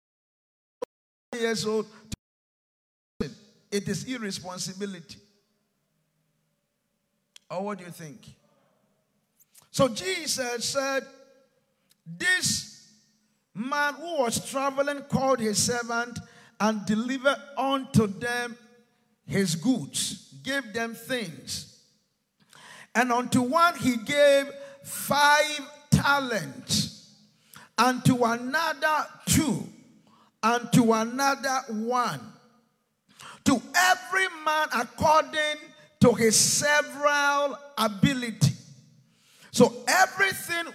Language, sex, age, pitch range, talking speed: English, male, 50-69, 215-280 Hz, 80 wpm